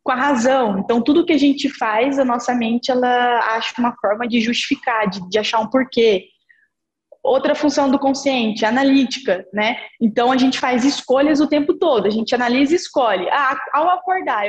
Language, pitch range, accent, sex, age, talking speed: Portuguese, 240-315 Hz, Brazilian, female, 10-29, 185 wpm